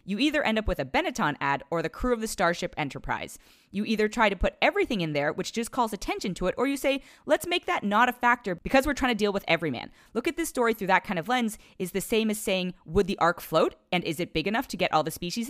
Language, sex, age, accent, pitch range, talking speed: English, female, 20-39, American, 170-235 Hz, 285 wpm